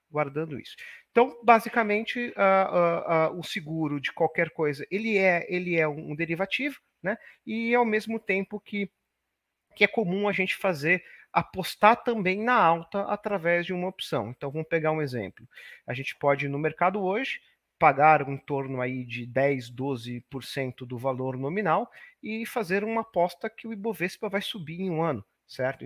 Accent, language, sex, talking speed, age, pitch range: Brazilian, Portuguese, male, 160 wpm, 40-59, 140-200 Hz